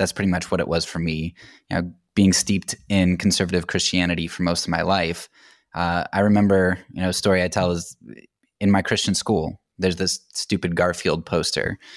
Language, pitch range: English, 85-100 Hz